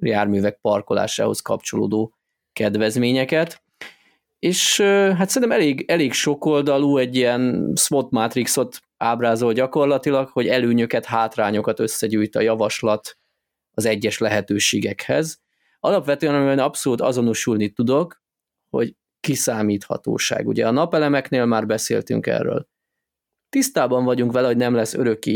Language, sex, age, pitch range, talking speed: Hungarian, male, 20-39, 110-145 Hz, 110 wpm